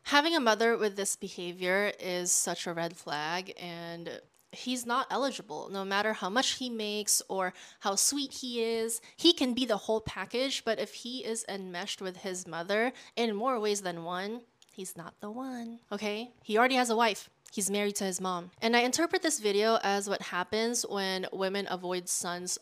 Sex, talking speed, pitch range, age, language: female, 190 wpm, 185-235 Hz, 20-39, English